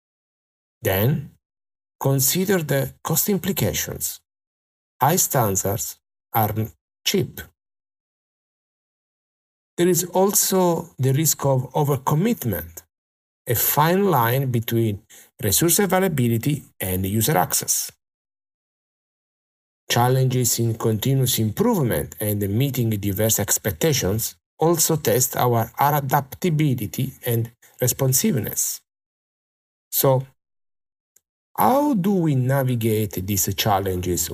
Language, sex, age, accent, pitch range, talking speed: English, male, 50-69, Italian, 95-140 Hz, 80 wpm